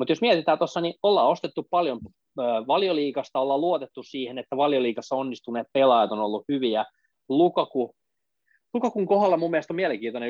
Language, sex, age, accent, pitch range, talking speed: Finnish, male, 20-39, native, 120-160 Hz, 155 wpm